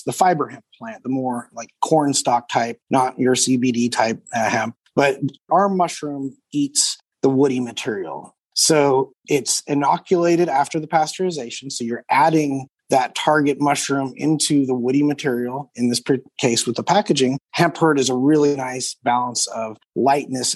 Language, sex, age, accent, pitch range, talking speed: English, male, 30-49, American, 130-155 Hz, 160 wpm